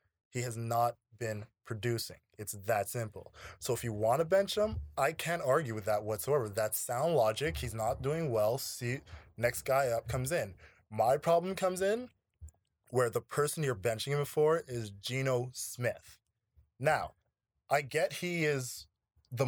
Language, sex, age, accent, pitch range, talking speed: English, male, 20-39, American, 115-155 Hz, 165 wpm